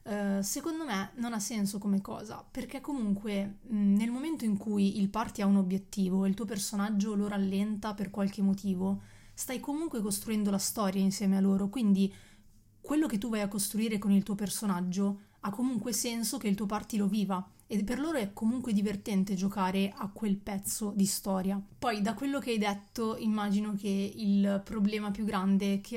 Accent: native